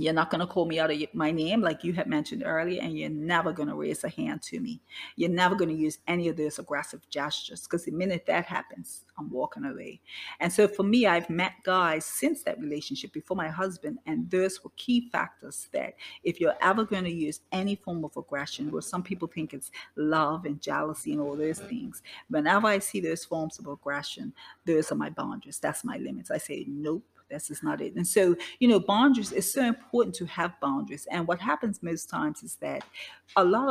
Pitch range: 160-205 Hz